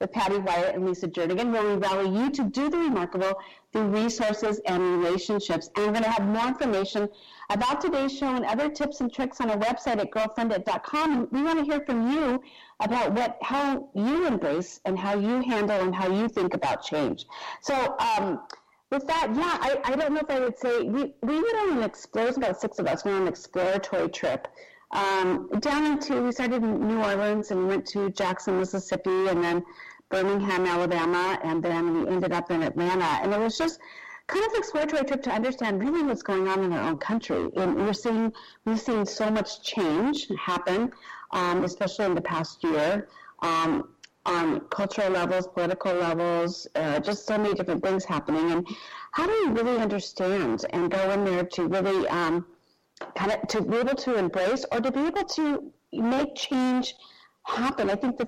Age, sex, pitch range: 40-59, female, 185-265 Hz